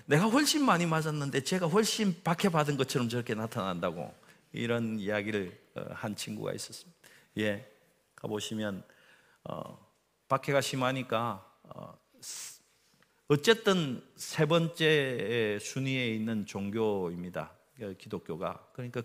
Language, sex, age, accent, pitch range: Korean, male, 40-59, native, 110-155 Hz